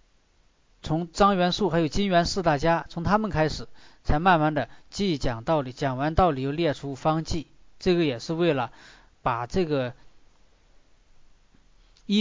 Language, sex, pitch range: Chinese, male, 135-180 Hz